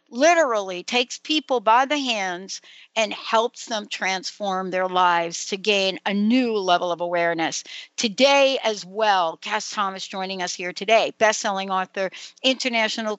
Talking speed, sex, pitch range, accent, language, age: 140 wpm, female, 195-265 Hz, American, English, 60-79